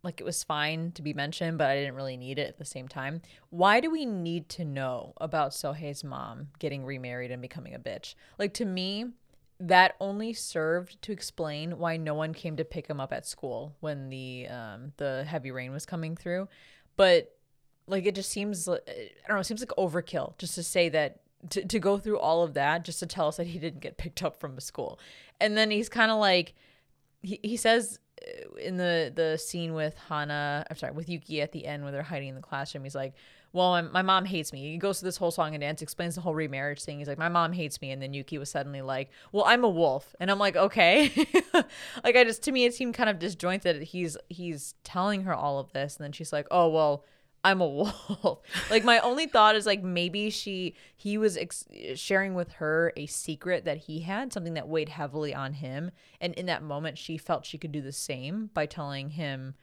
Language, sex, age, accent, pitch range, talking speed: English, female, 20-39, American, 145-195 Hz, 230 wpm